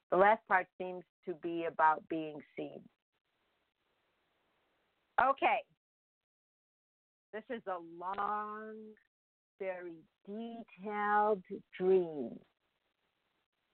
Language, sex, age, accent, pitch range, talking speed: English, female, 50-69, American, 165-210 Hz, 75 wpm